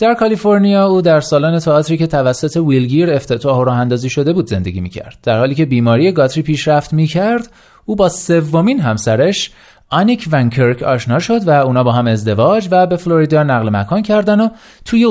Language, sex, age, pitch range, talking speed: Persian, male, 30-49, 120-190 Hz, 185 wpm